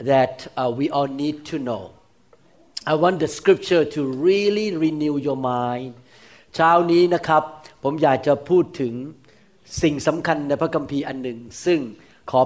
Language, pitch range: Thai, 140-185 Hz